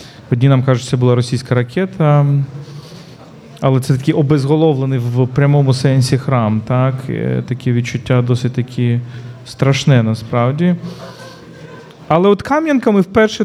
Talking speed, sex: 120 wpm, male